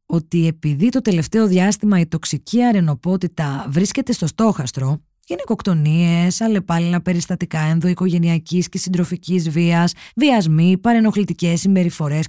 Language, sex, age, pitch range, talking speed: Greek, female, 20-39, 160-215 Hz, 105 wpm